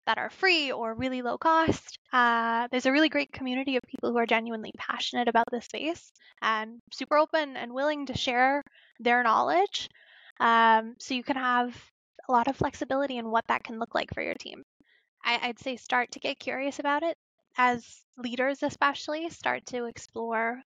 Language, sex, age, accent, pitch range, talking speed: English, female, 10-29, American, 235-275 Hz, 185 wpm